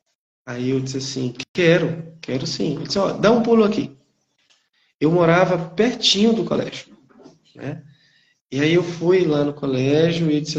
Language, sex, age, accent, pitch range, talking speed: Portuguese, male, 20-39, Brazilian, 130-160 Hz, 170 wpm